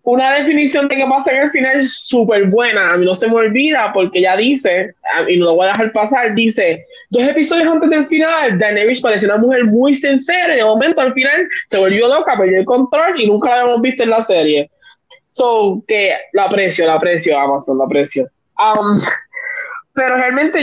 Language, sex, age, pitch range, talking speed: Spanish, male, 20-39, 190-255 Hz, 205 wpm